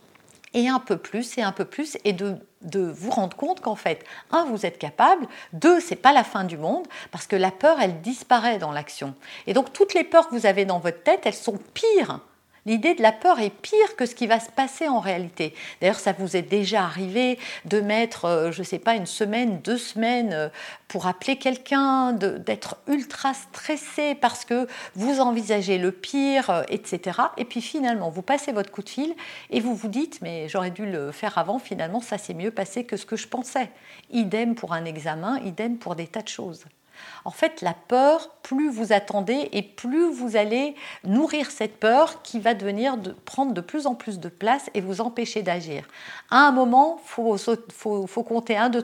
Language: French